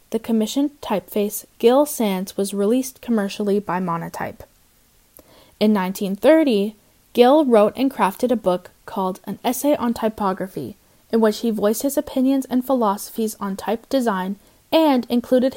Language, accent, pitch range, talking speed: English, American, 200-255 Hz, 140 wpm